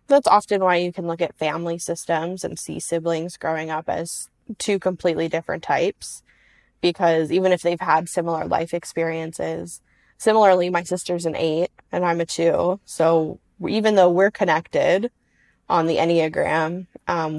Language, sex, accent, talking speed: English, female, American, 155 wpm